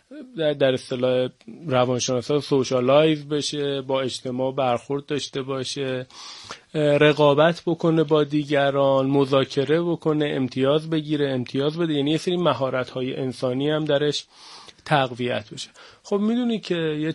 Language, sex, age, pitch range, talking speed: Persian, male, 30-49, 135-165 Hz, 120 wpm